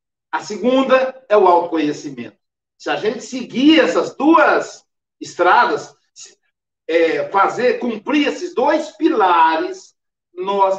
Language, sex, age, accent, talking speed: Portuguese, male, 60-79, Brazilian, 105 wpm